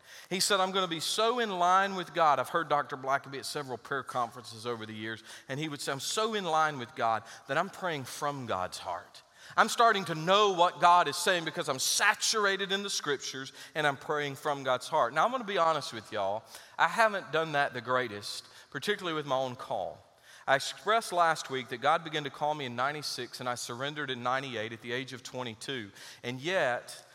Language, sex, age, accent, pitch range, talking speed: English, male, 40-59, American, 125-170 Hz, 225 wpm